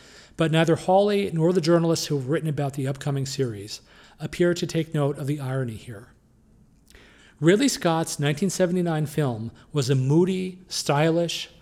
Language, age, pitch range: English, 40-59, 135-165 Hz